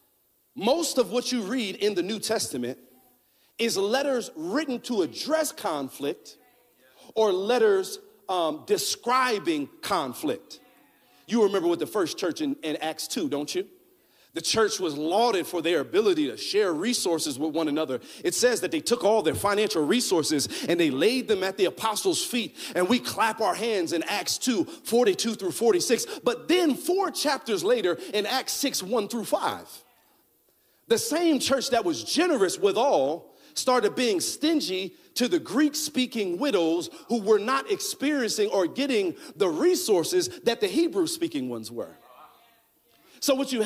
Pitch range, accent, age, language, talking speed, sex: 210-345 Hz, American, 40-59, English, 160 wpm, male